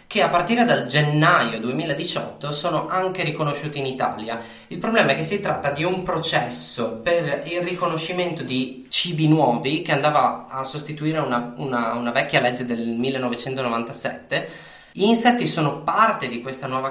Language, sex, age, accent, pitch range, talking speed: Italian, male, 20-39, native, 125-170 Hz, 150 wpm